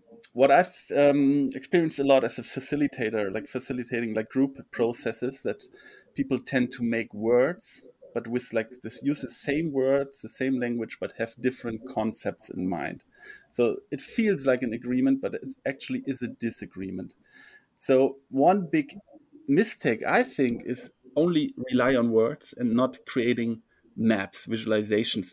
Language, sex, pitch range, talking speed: English, male, 115-145 Hz, 155 wpm